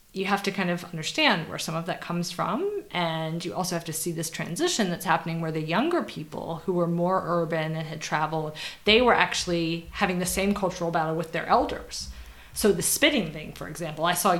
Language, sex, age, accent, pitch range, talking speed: English, female, 20-39, American, 160-190 Hz, 215 wpm